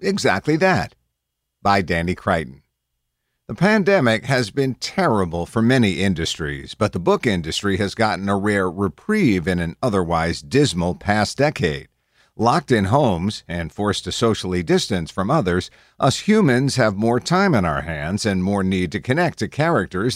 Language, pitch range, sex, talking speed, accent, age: English, 90-125 Hz, male, 160 wpm, American, 50-69